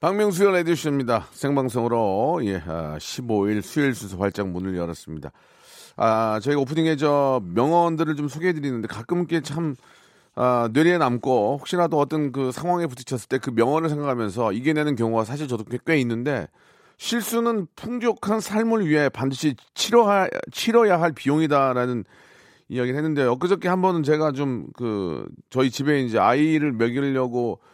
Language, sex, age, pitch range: Korean, male, 40-59, 115-165 Hz